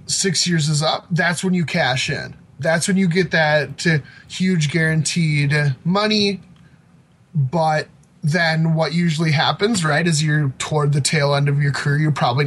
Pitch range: 145-195 Hz